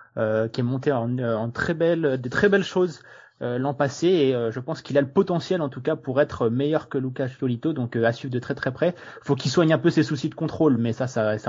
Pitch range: 120-145 Hz